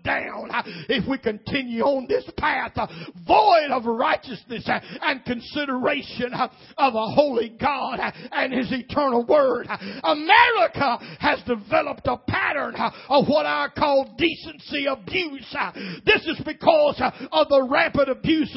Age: 50-69